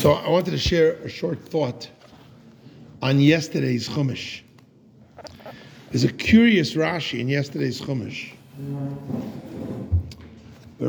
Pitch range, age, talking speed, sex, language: 120-175 Hz, 50-69, 105 wpm, male, English